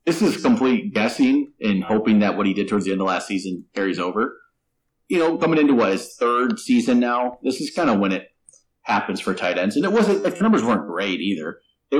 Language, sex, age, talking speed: English, male, 30-49, 235 wpm